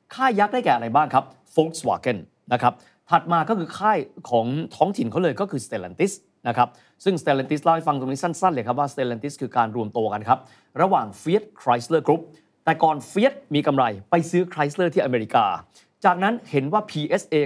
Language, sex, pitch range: Thai, male, 125-185 Hz